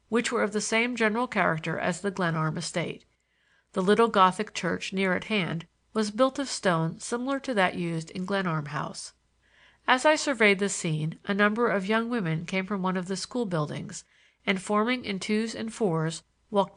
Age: 50-69